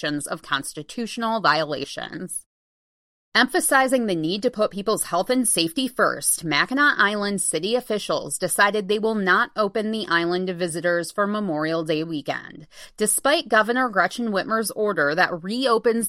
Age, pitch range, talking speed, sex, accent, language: 30-49, 170-230 Hz, 140 wpm, female, American, English